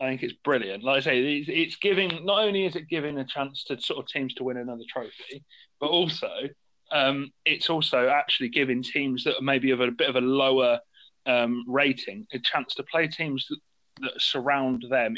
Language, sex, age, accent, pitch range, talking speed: English, male, 30-49, British, 125-170 Hz, 200 wpm